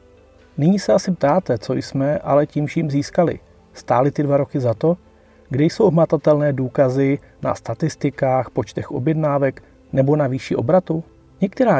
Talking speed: 140 wpm